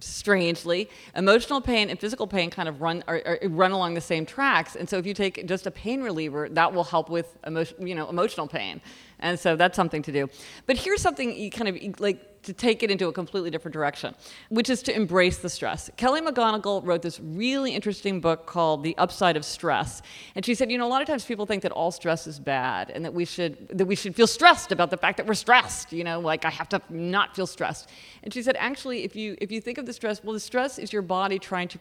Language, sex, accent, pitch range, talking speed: English, female, American, 170-225 Hz, 250 wpm